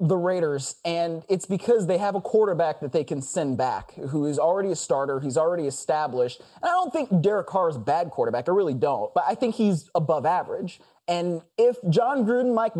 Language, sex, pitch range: English, male, 160-225 Hz